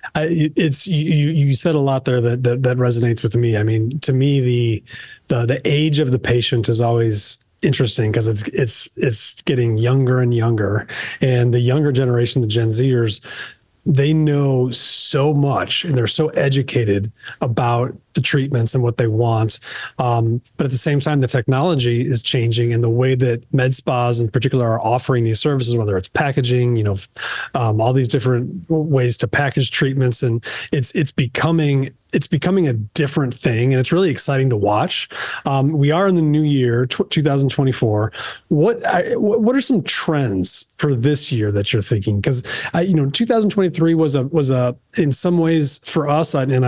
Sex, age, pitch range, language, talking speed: male, 30-49, 120-150 Hz, English, 185 wpm